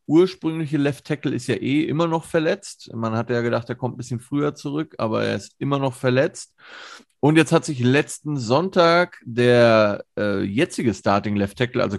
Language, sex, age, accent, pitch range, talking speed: German, male, 30-49, German, 105-140 Hz, 190 wpm